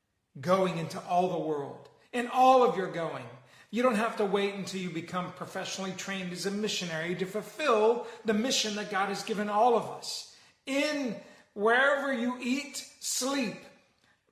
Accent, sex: American, male